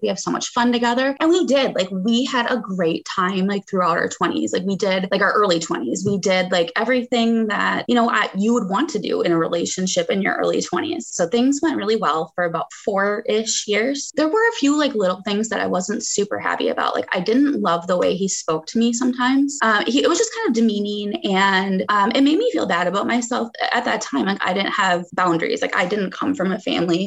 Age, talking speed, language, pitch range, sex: 20-39, 250 wpm, English, 185-245 Hz, female